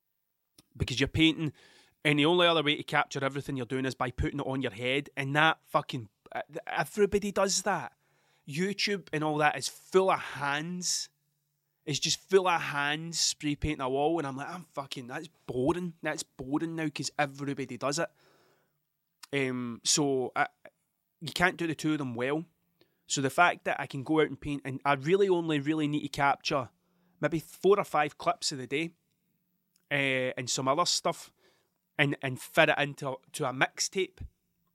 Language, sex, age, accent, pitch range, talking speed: English, male, 30-49, British, 140-170 Hz, 185 wpm